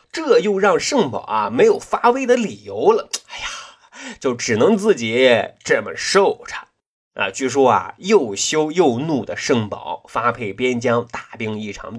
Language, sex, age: Chinese, male, 20-39